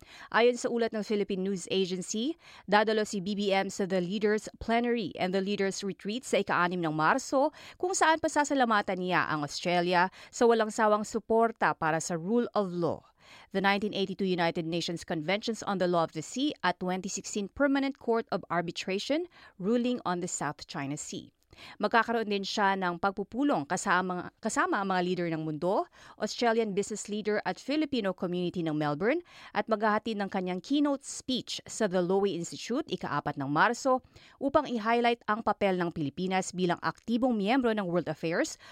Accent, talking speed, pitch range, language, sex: native, 165 wpm, 180-235 Hz, Filipino, female